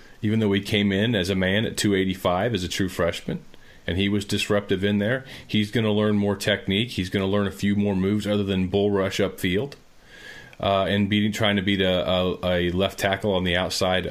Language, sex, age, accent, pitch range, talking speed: English, male, 40-59, American, 100-115 Hz, 215 wpm